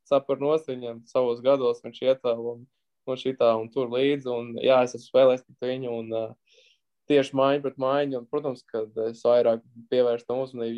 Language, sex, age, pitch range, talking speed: English, male, 20-39, 120-135 Hz, 160 wpm